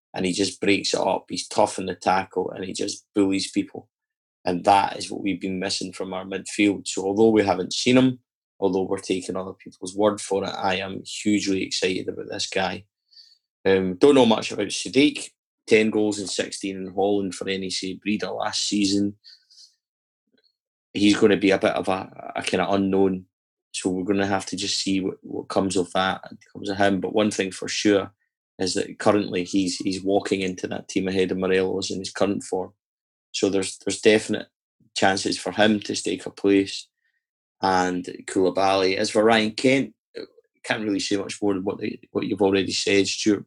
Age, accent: 20-39, British